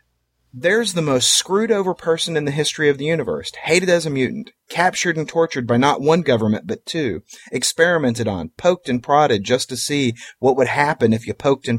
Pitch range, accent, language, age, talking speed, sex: 105-145 Hz, American, English, 30-49, 205 wpm, male